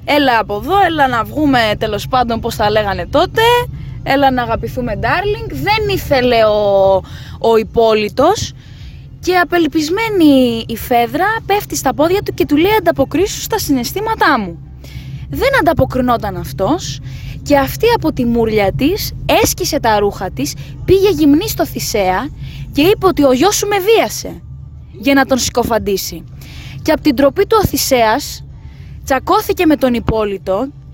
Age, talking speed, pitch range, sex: 20-39, 145 wpm, 215-335 Hz, female